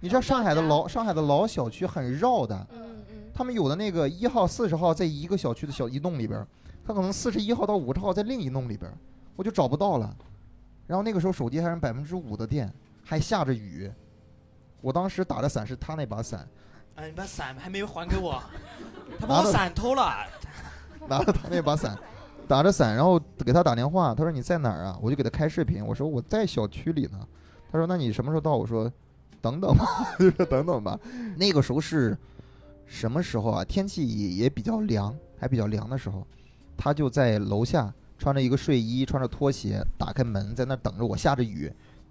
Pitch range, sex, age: 110-165 Hz, male, 20-39